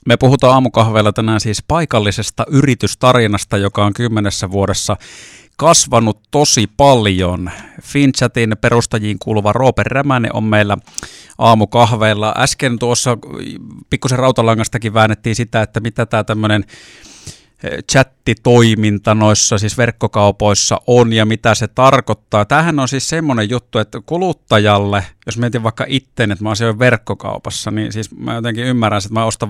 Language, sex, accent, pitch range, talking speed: Finnish, male, native, 105-125 Hz, 130 wpm